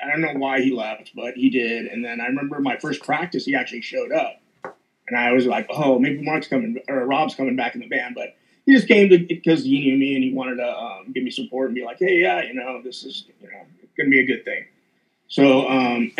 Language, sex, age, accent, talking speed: English, male, 30-49, American, 250 wpm